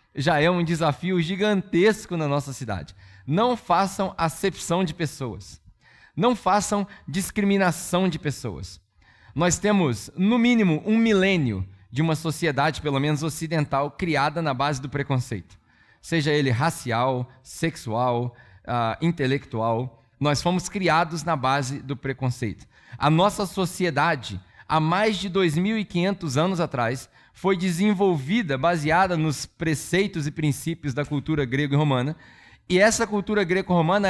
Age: 20-39